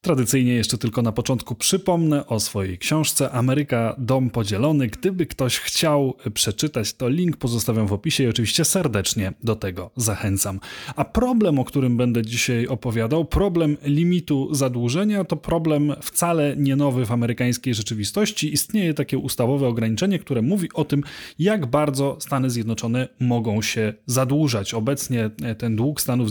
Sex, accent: male, native